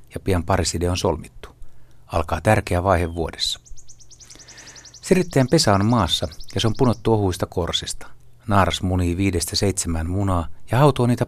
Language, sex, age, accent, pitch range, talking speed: Finnish, male, 60-79, native, 85-120 Hz, 145 wpm